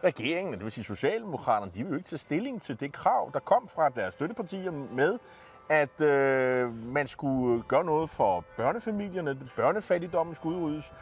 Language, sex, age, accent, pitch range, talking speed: Danish, male, 30-49, native, 120-180 Hz, 170 wpm